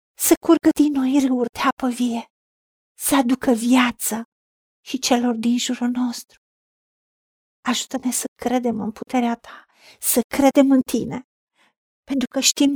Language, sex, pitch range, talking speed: Romanian, female, 220-270 Hz, 135 wpm